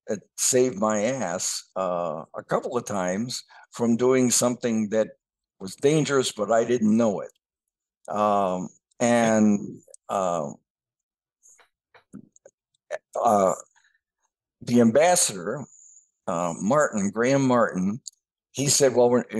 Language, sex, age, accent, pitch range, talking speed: English, male, 60-79, American, 95-120 Hz, 105 wpm